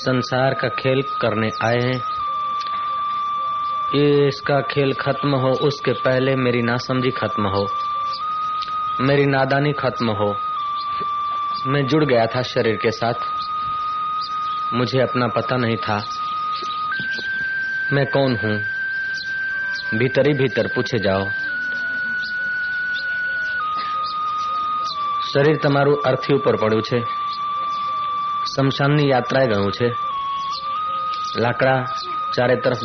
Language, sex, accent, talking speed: Hindi, male, native, 95 wpm